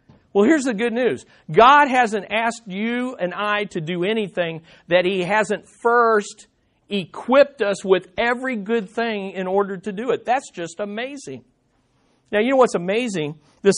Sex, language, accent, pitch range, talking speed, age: male, English, American, 160-215 Hz, 165 wpm, 50-69